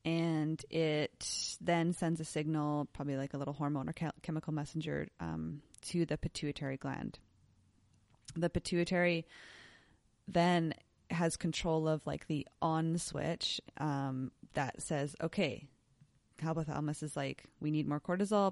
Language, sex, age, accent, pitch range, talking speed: English, female, 20-39, American, 145-165 Hz, 130 wpm